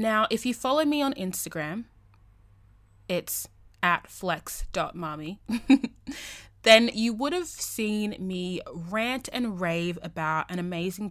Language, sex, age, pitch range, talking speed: English, female, 20-39, 165-220 Hz, 120 wpm